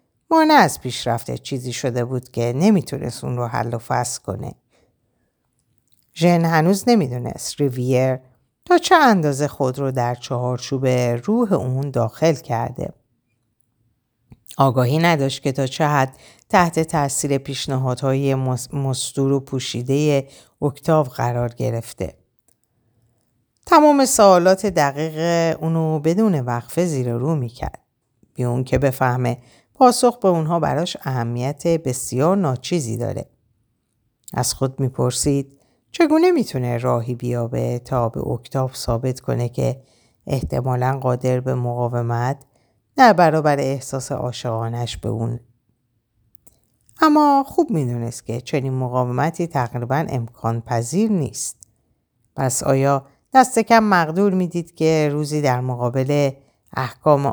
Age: 50-69